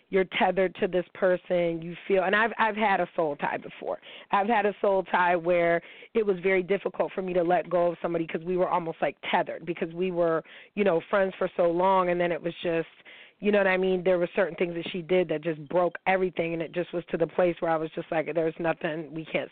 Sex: female